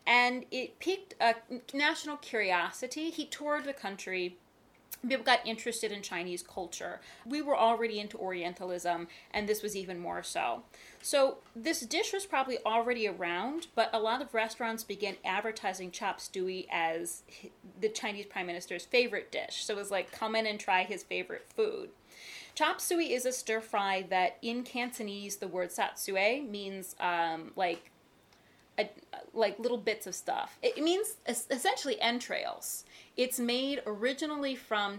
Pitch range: 195-265 Hz